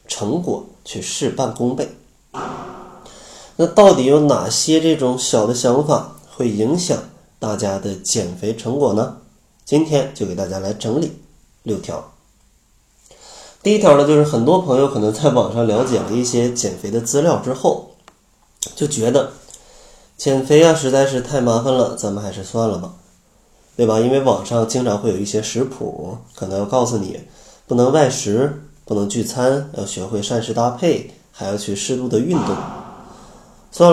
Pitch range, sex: 105-140 Hz, male